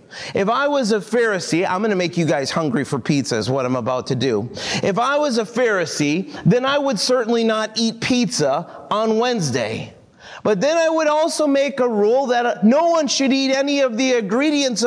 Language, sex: English, male